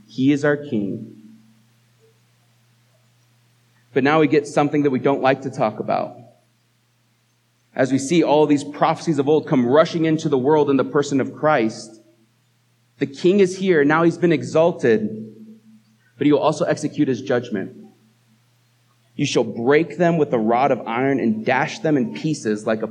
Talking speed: 170 wpm